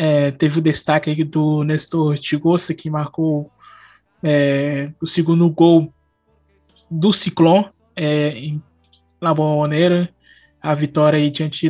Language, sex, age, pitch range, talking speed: Portuguese, male, 20-39, 150-170 Hz, 125 wpm